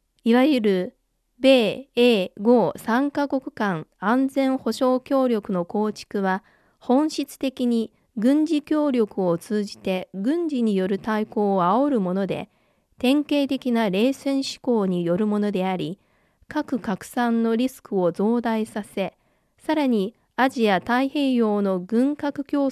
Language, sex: Japanese, female